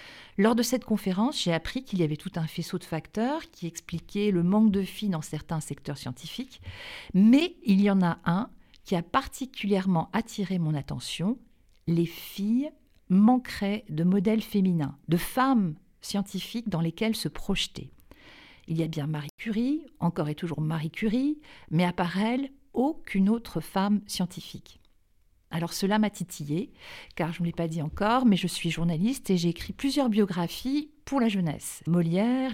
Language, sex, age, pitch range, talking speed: French, female, 50-69, 170-225 Hz, 170 wpm